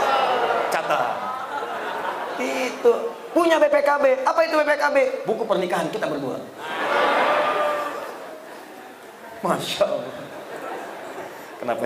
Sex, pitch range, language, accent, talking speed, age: male, 155-200 Hz, Indonesian, native, 65 wpm, 30-49